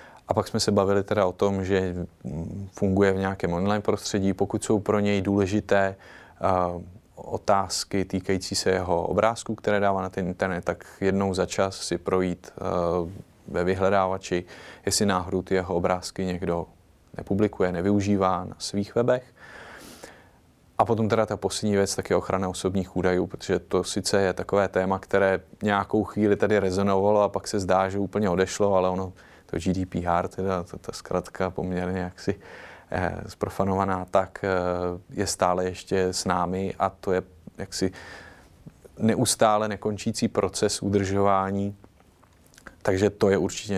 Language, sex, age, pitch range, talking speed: Czech, male, 20-39, 90-100 Hz, 145 wpm